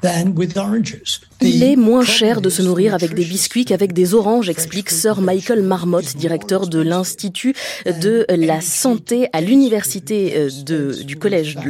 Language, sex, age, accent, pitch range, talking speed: French, female, 20-39, French, 165-230 Hz, 145 wpm